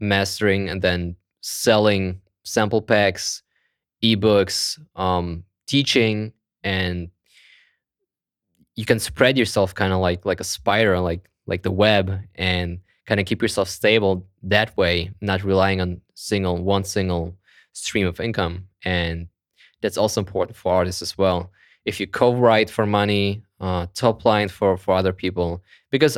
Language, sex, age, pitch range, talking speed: English, male, 20-39, 90-105 Hz, 140 wpm